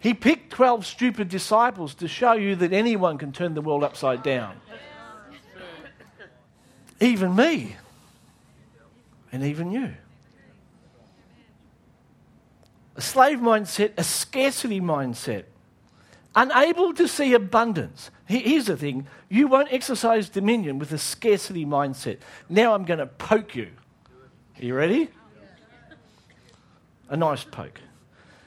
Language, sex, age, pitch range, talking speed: English, male, 50-69, 160-255 Hz, 115 wpm